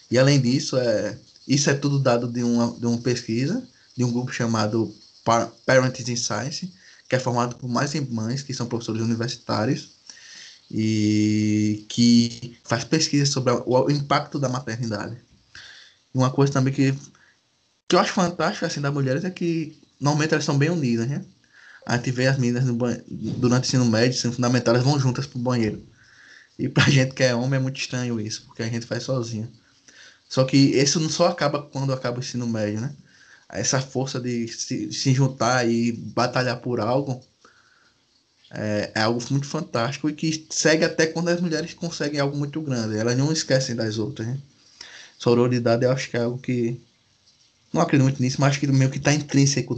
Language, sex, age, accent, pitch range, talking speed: Portuguese, male, 10-29, Brazilian, 115-140 Hz, 185 wpm